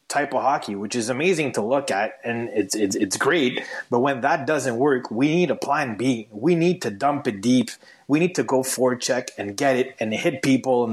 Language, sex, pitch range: English, male, 115-150 Hz